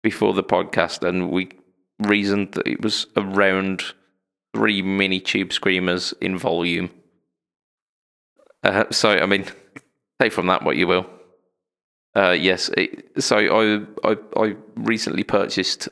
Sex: male